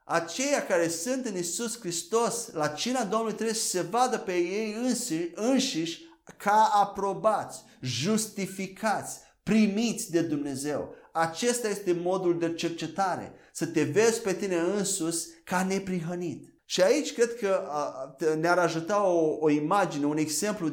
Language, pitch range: Romanian, 165-230 Hz